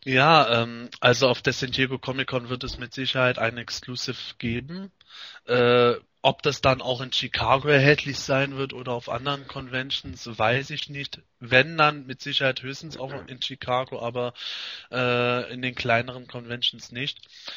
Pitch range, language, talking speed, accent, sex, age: 120-140 Hz, German, 165 wpm, German, male, 20-39